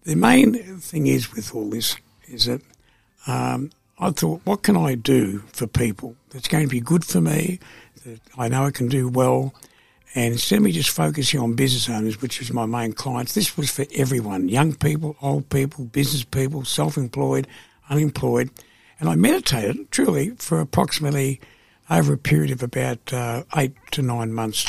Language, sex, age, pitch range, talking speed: English, male, 60-79, 120-150 Hz, 180 wpm